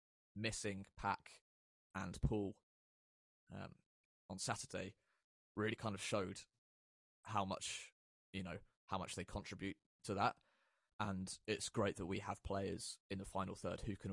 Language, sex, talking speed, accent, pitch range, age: English, male, 145 wpm, British, 90-105 Hz, 20-39